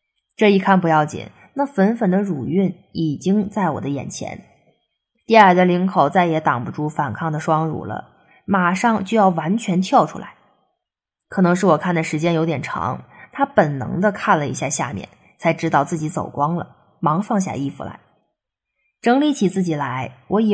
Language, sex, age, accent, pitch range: Chinese, female, 20-39, native, 165-220 Hz